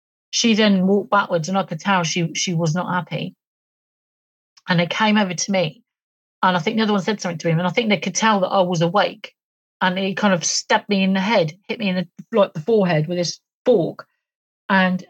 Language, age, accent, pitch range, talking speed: English, 40-59, British, 180-220 Hz, 235 wpm